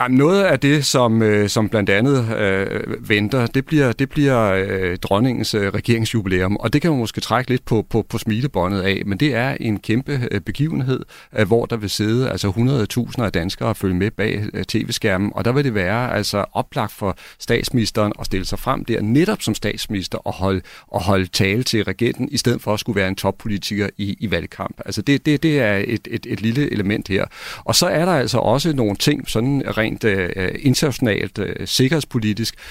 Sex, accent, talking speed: male, native, 190 wpm